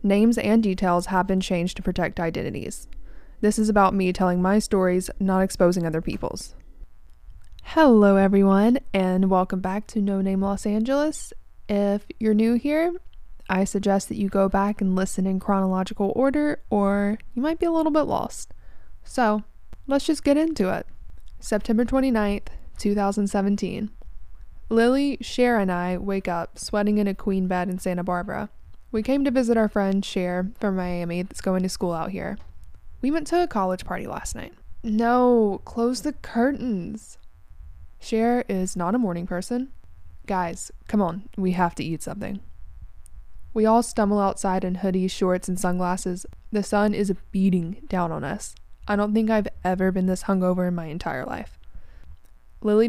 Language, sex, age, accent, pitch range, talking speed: English, female, 20-39, American, 180-220 Hz, 165 wpm